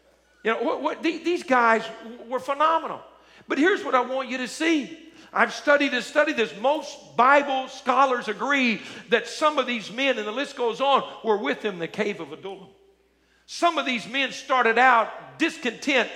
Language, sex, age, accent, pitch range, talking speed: English, male, 50-69, American, 225-275 Hz, 185 wpm